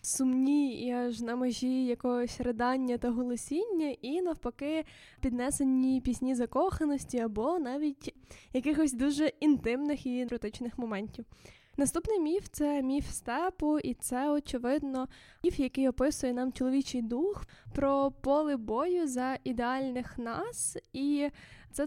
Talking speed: 125 wpm